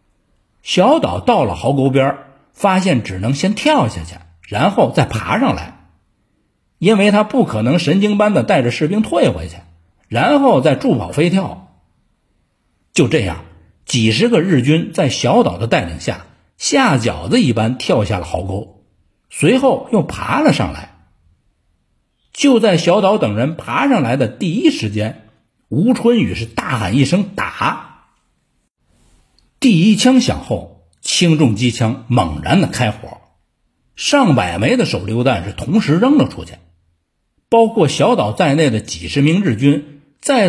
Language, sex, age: Chinese, male, 50-69